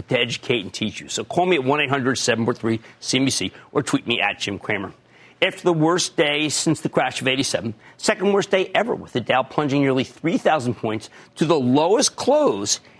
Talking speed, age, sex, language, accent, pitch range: 185 wpm, 40-59, male, English, American, 115-175 Hz